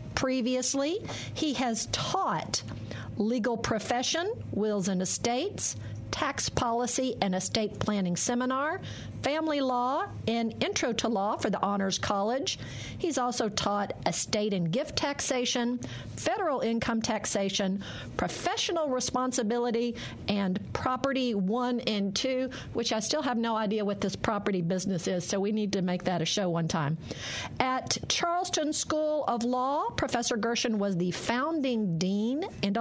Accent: American